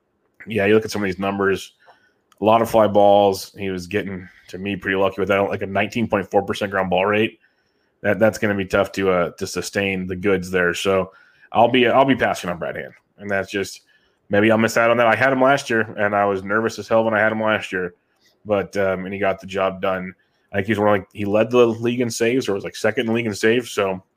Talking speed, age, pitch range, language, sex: 260 wpm, 20-39, 100-115 Hz, English, male